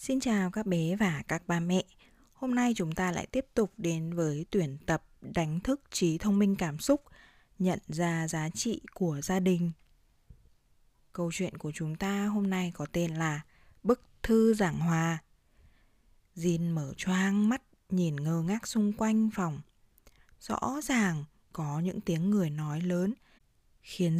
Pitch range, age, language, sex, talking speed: 165-215 Hz, 20-39, Vietnamese, female, 165 wpm